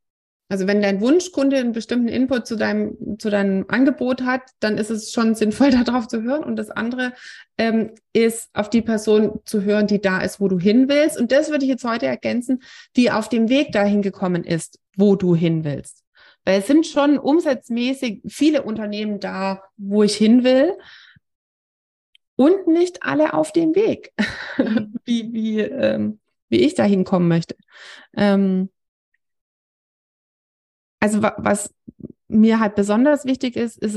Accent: German